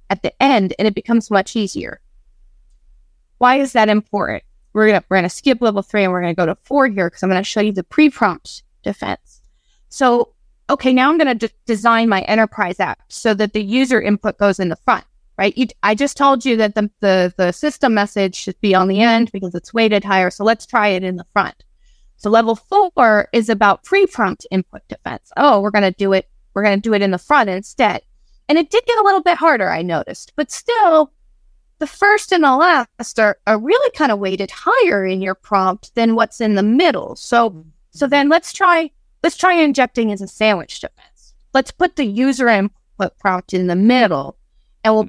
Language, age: English, 20-39